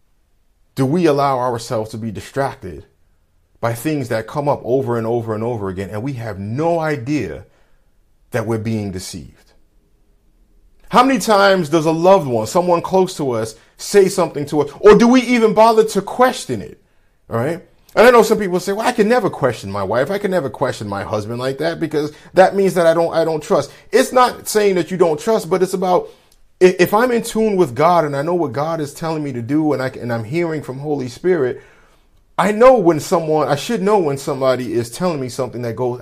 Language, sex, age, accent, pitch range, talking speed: English, male, 30-49, American, 120-185 Hz, 220 wpm